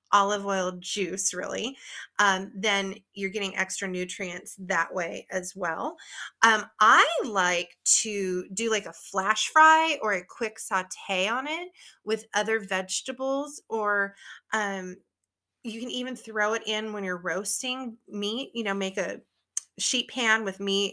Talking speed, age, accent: 150 wpm, 30-49, American